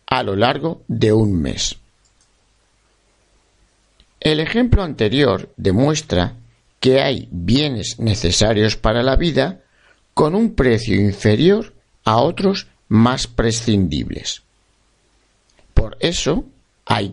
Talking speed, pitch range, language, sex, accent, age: 100 wpm, 100-135 Hz, Spanish, male, Spanish, 60-79